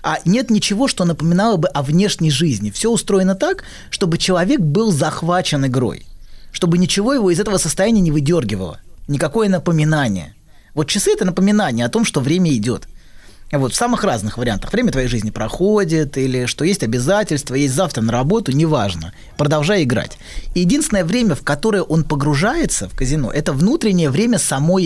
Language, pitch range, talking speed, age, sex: Russian, 145-200 Hz, 165 wpm, 20-39, male